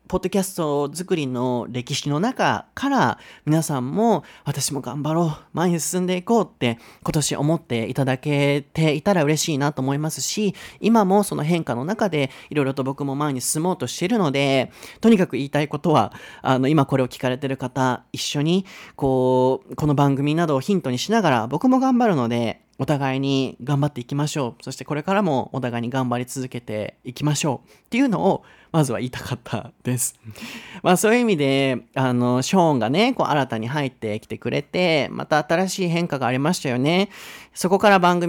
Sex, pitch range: male, 125-170 Hz